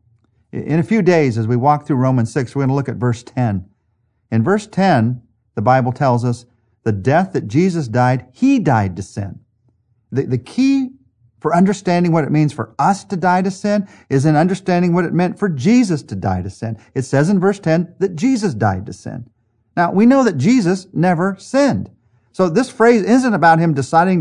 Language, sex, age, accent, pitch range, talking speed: English, male, 50-69, American, 115-170 Hz, 205 wpm